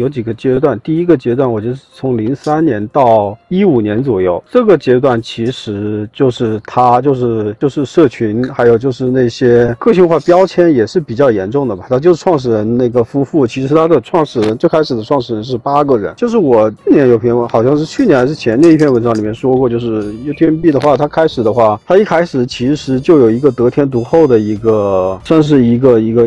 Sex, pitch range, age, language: male, 115-145 Hz, 50-69, Chinese